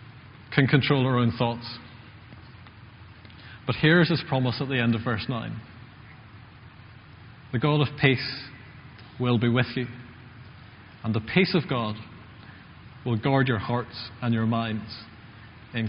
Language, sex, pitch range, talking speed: English, male, 115-140 Hz, 140 wpm